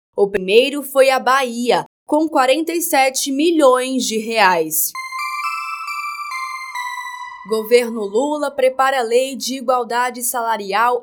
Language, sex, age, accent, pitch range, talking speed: Portuguese, female, 20-39, Brazilian, 215-280 Hz, 100 wpm